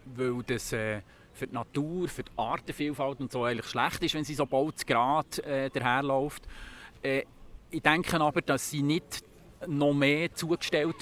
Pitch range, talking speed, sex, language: 125-150 Hz, 165 wpm, male, German